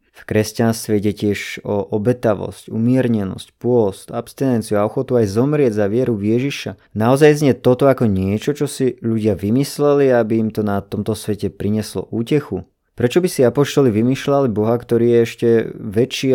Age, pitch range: 20-39, 105-125 Hz